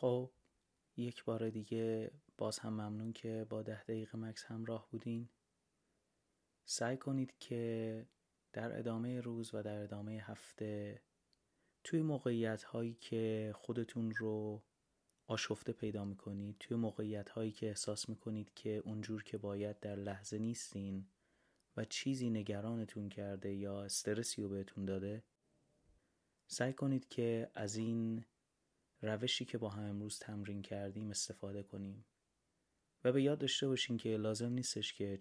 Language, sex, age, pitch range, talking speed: Persian, male, 30-49, 105-115 Hz, 130 wpm